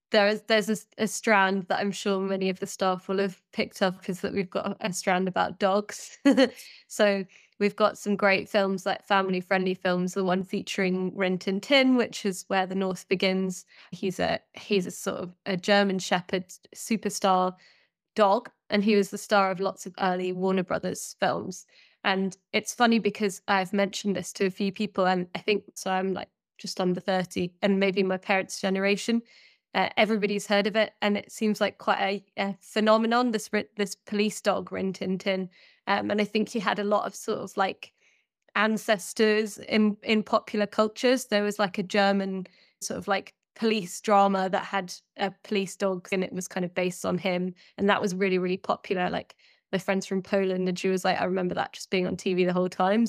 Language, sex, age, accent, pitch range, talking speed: English, female, 10-29, British, 190-210 Hz, 205 wpm